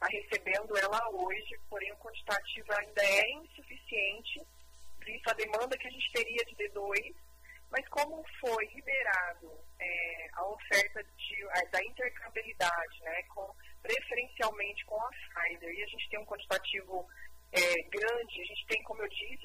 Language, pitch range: Portuguese, 195-235 Hz